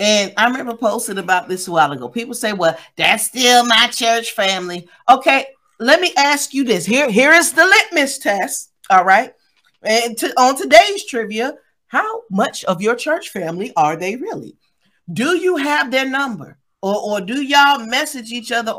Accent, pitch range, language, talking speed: American, 215-270 Hz, English, 180 wpm